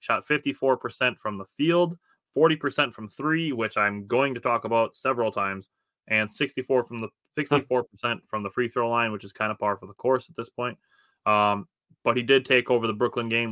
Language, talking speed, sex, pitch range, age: English, 215 wpm, male, 105-135 Hz, 20-39